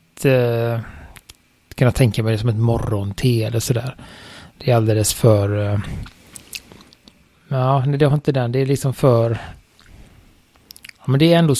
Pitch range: 115-140 Hz